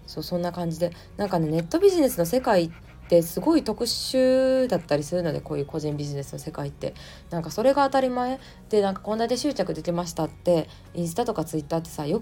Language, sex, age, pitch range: Japanese, female, 20-39, 150-200 Hz